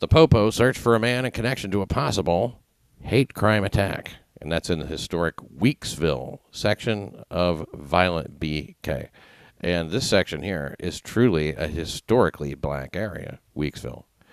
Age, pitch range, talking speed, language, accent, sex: 50-69, 80-100 Hz, 145 wpm, English, American, male